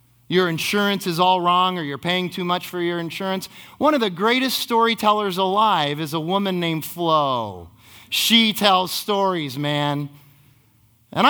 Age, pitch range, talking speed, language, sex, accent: 30-49, 120-175 Hz, 155 wpm, English, male, American